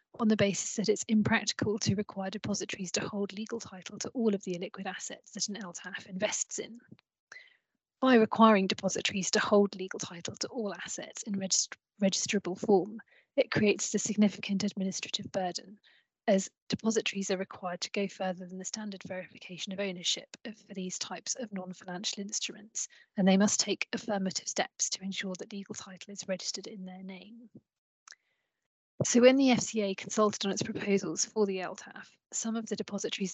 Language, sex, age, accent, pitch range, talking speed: English, female, 30-49, British, 190-215 Hz, 165 wpm